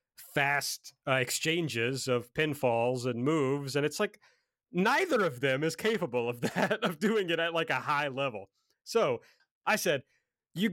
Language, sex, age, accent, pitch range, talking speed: English, male, 40-59, American, 130-190 Hz, 160 wpm